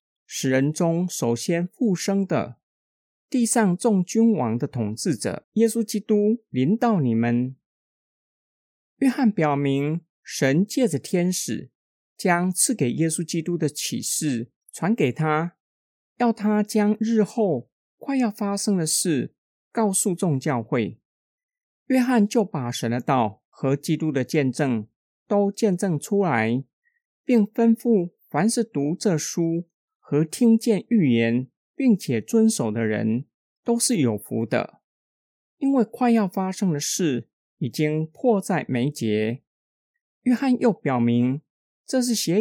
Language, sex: Chinese, male